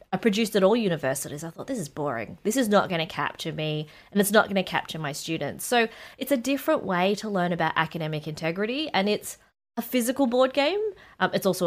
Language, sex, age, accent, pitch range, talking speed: English, female, 20-39, Australian, 175-240 Hz, 225 wpm